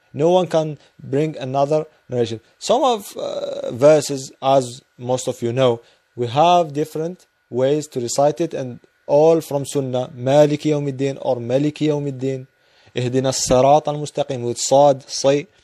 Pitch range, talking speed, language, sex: 130-160 Hz, 140 wpm, English, male